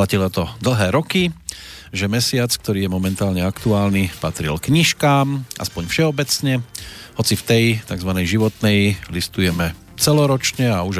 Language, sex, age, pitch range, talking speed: Slovak, male, 40-59, 95-115 Hz, 125 wpm